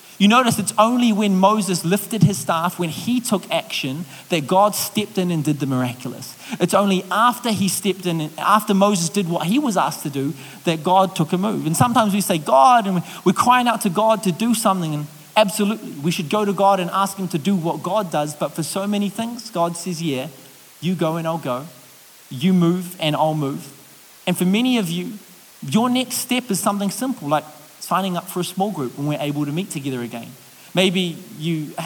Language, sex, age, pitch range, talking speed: English, male, 30-49, 155-205 Hz, 215 wpm